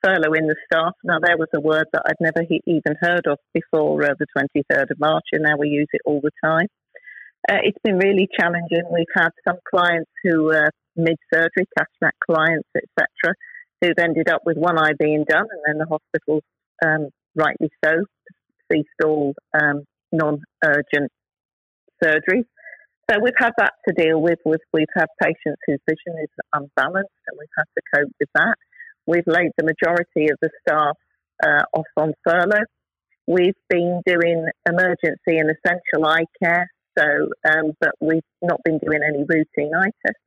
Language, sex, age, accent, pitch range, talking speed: English, female, 40-59, British, 155-180 Hz, 175 wpm